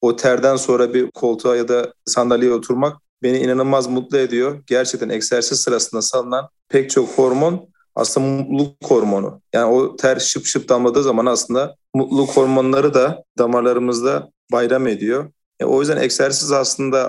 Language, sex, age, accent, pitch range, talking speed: Turkish, male, 40-59, native, 125-145 Hz, 150 wpm